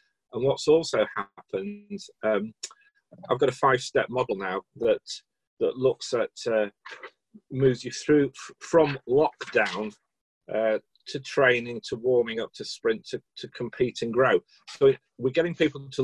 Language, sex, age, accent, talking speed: English, male, 40-59, British, 150 wpm